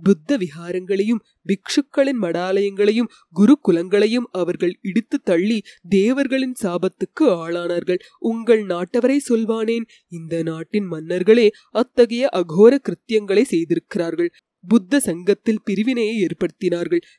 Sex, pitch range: female, 180-225 Hz